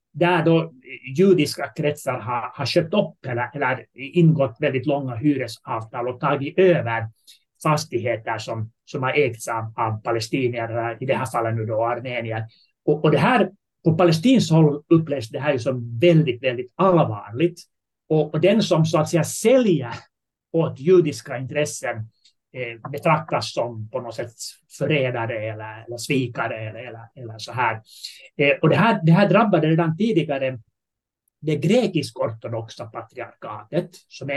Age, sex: 30-49, male